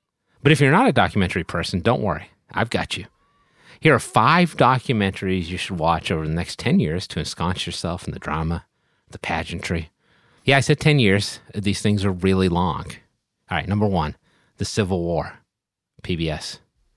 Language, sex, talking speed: English, male, 175 wpm